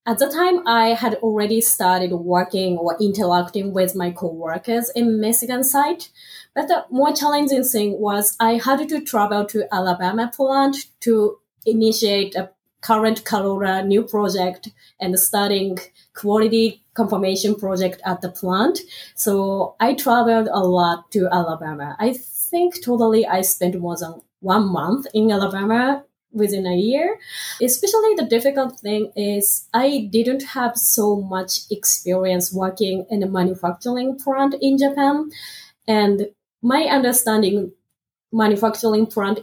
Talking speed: 135 wpm